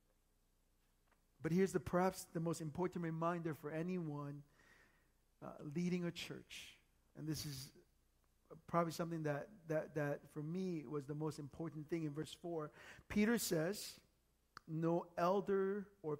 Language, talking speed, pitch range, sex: English, 135 wpm, 155-225 Hz, male